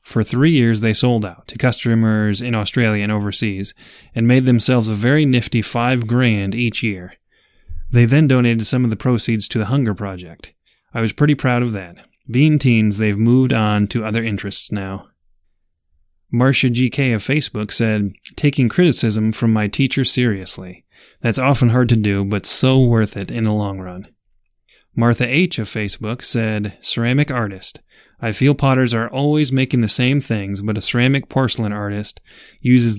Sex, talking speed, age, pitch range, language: male, 170 wpm, 30-49, 105-125 Hz, English